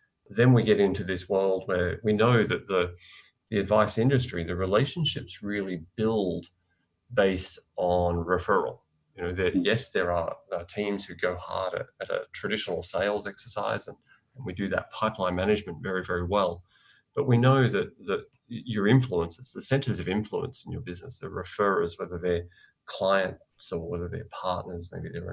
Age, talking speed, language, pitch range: 30-49, 175 wpm, English, 90-110 Hz